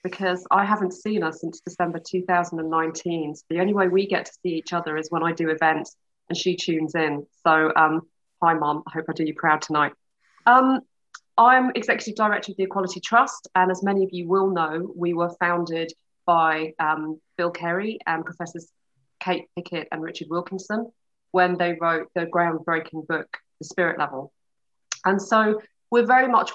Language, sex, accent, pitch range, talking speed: English, female, British, 165-200 Hz, 185 wpm